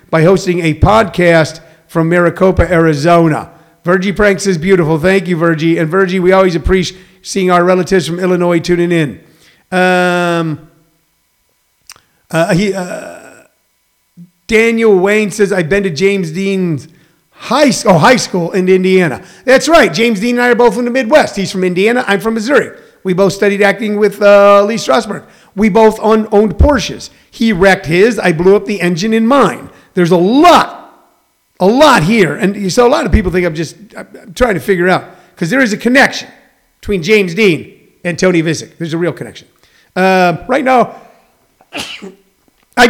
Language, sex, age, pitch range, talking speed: English, male, 50-69, 170-220 Hz, 170 wpm